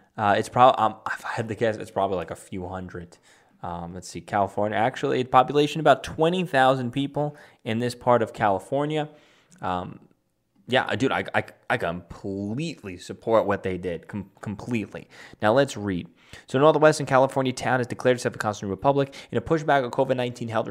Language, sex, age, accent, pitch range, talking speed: English, male, 20-39, American, 110-155 Hz, 190 wpm